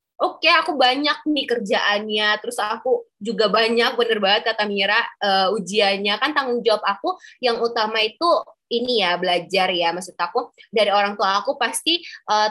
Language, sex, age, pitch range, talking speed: Indonesian, female, 20-39, 200-250 Hz, 170 wpm